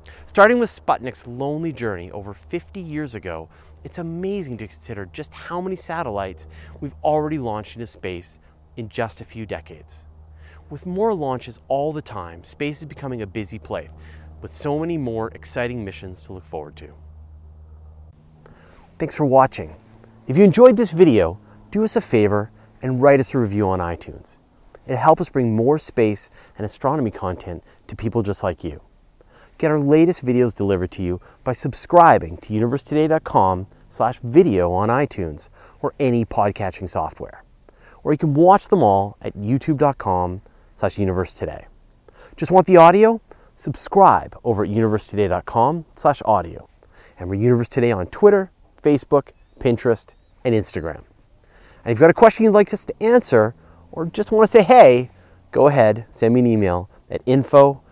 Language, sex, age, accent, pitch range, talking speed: English, male, 30-49, American, 90-145 Hz, 160 wpm